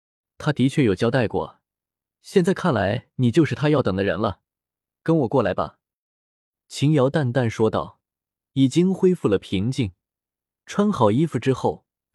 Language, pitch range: Chinese, 110-160 Hz